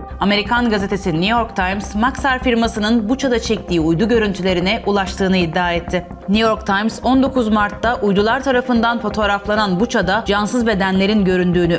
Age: 30-49